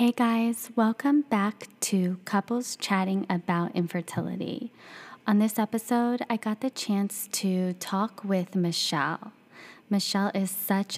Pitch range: 180-205 Hz